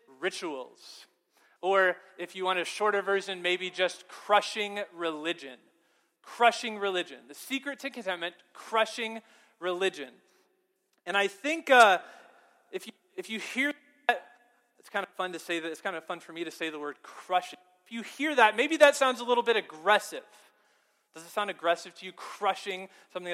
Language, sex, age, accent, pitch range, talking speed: English, male, 30-49, American, 180-240 Hz, 170 wpm